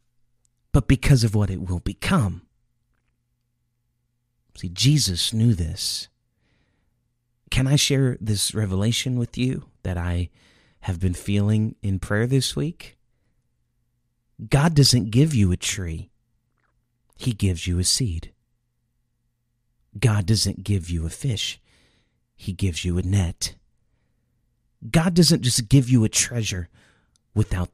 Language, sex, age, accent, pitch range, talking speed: English, male, 40-59, American, 95-120 Hz, 125 wpm